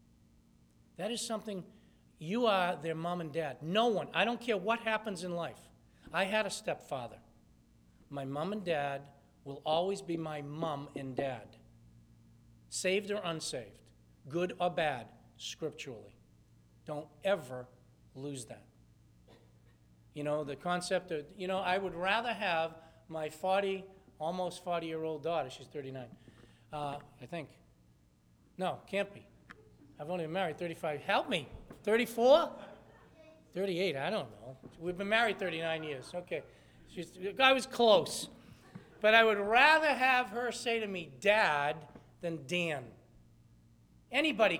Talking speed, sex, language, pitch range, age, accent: 140 wpm, male, English, 140-195 Hz, 50-69, American